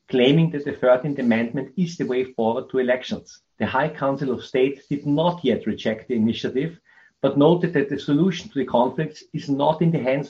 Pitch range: 125-155 Hz